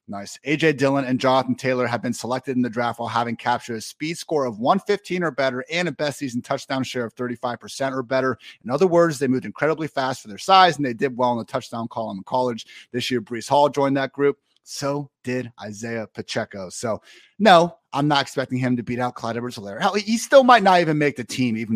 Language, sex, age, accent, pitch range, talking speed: English, male, 30-49, American, 115-160 Hz, 230 wpm